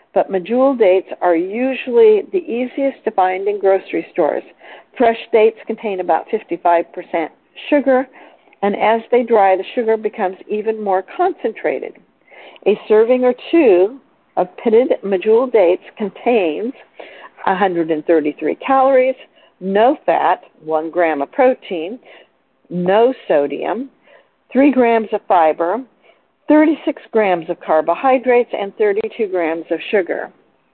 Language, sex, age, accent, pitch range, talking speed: English, female, 50-69, American, 180-245 Hz, 120 wpm